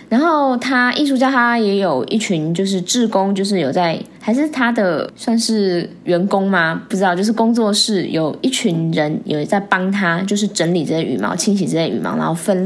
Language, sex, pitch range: Chinese, female, 175-230 Hz